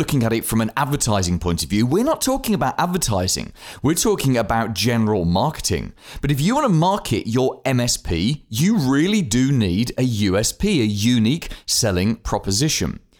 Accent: British